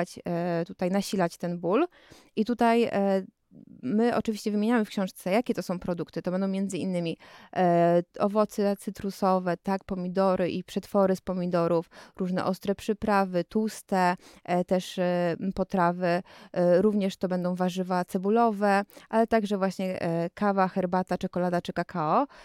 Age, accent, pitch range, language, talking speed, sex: 20-39, native, 180-210 Hz, Polish, 135 wpm, female